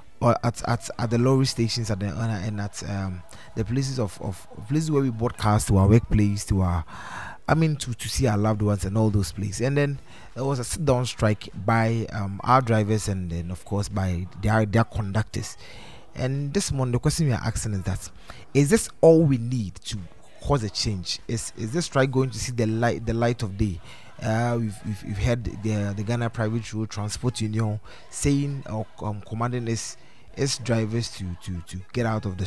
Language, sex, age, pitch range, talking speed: English, male, 20-39, 105-125 Hz, 215 wpm